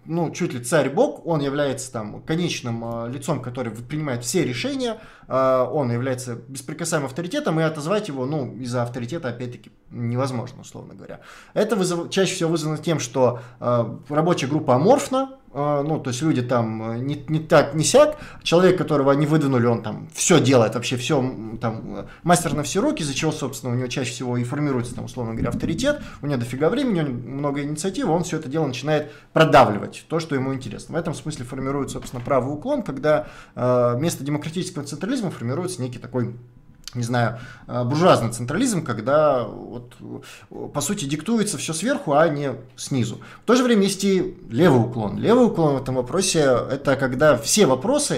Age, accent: 20-39, native